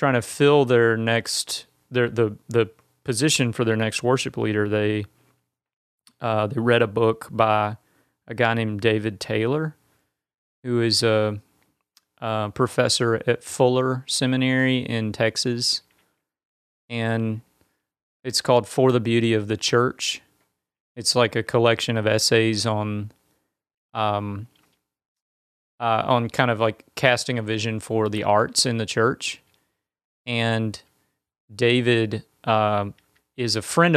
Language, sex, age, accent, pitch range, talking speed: English, male, 30-49, American, 110-125 Hz, 130 wpm